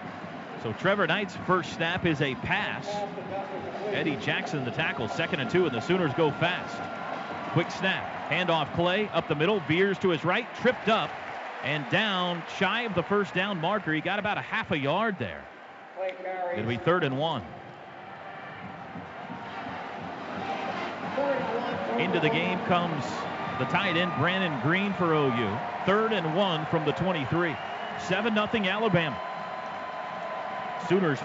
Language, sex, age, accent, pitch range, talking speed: English, male, 40-59, American, 160-200 Hz, 145 wpm